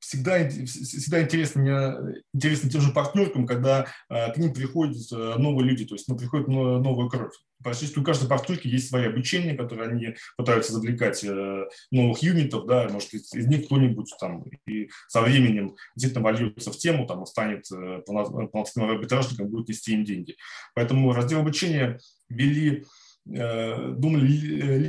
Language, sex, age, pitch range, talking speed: Russian, male, 20-39, 110-135 Hz, 155 wpm